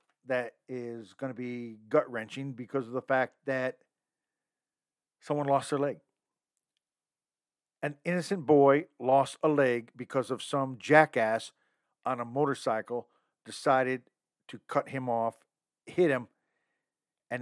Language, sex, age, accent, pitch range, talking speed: English, male, 50-69, American, 120-145 Hz, 125 wpm